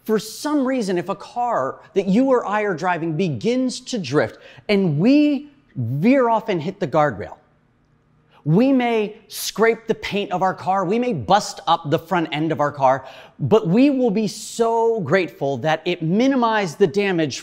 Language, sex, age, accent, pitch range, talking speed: English, male, 30-49, American, 160-225 Hz, 180 wpm